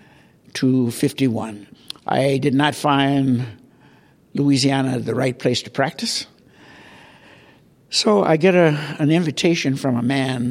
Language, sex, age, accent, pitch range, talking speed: English, male, 60-79, American, 125-145 Hz, 120 wpm